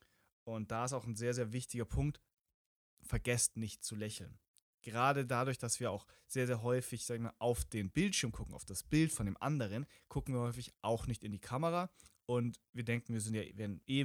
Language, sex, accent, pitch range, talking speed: German, male, German, 105-130 Hz, 205 wpm